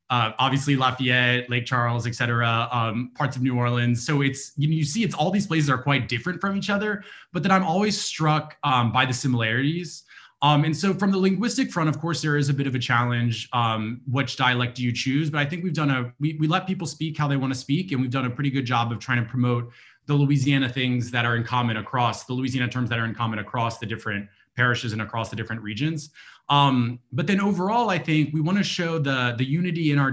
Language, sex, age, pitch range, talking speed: English, male, 20-39, 120-145 Hz, 250 wpm